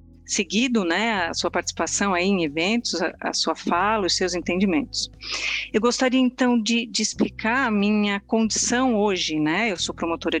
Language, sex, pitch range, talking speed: Portuguese, female, 180-235 Hz, 160 wpm